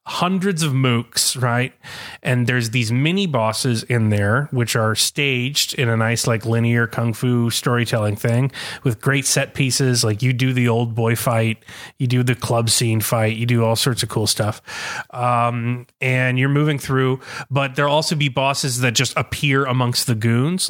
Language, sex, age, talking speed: English, male, 30-49, 185 wpm